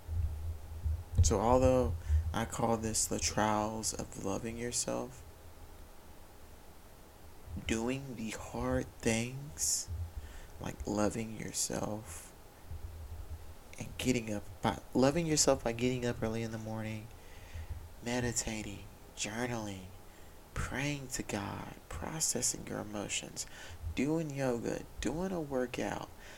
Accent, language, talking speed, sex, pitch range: American, English, 100 wpm, male, 85-120 Hz